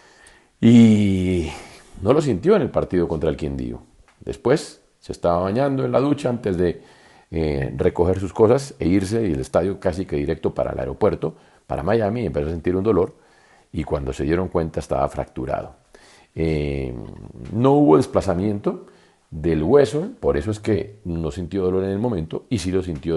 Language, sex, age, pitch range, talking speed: Spanish, male, 40-59, 80-110 Hz, 175 wpm